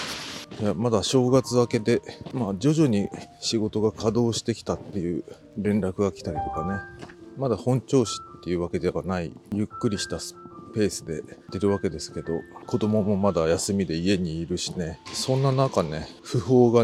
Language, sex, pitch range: Japanese, male, 95-120 Hz